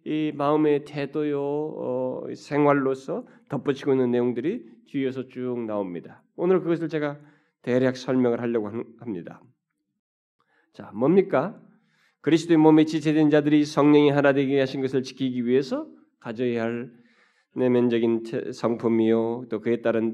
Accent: native